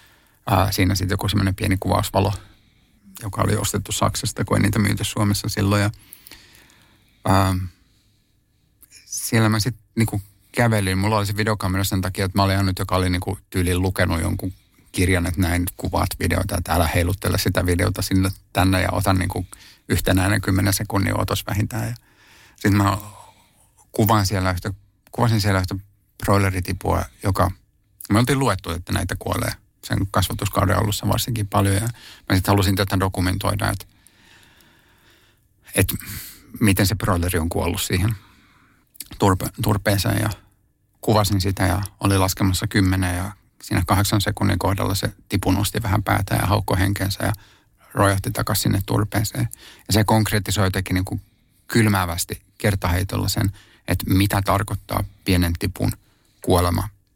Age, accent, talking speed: 50-69, native, 145 wpm